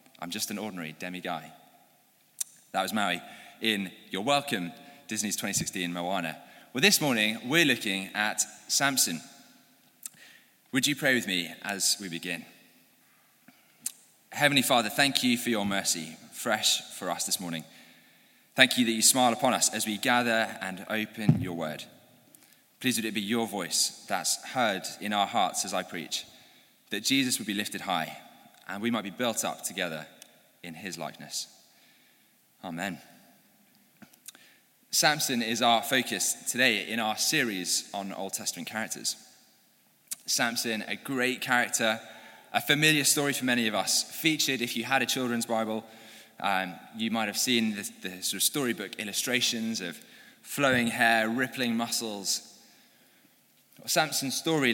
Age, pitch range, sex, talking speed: 20-39, 105-130 Hz, male, 150 wpm